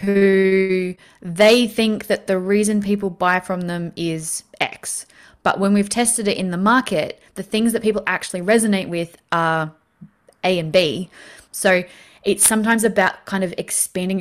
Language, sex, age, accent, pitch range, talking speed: English, female, 20-39, Australian, 180-215 Hz, 160 wpm